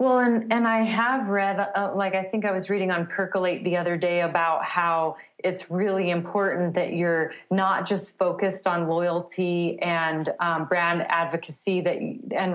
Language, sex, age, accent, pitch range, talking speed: English, female, 30-49, American, 165-190 Hz, 170 wpm